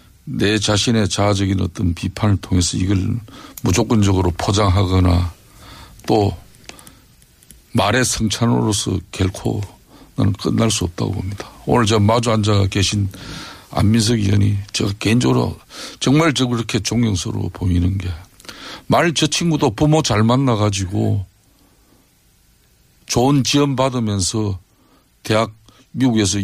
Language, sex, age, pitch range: Korean, male, 50-69, 100-125 Hz